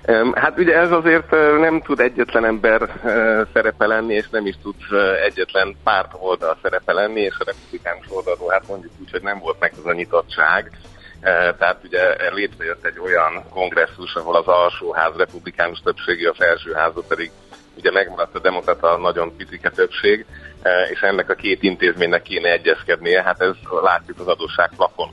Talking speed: 160 wpm